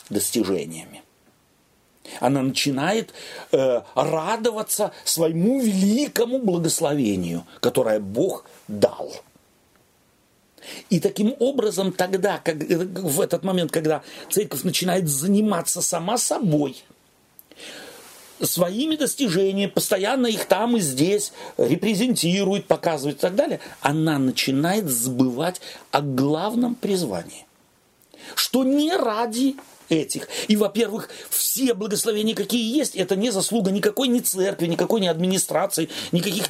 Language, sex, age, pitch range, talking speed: Russian, male, 40-59, 150-215 Hz, 105 wpm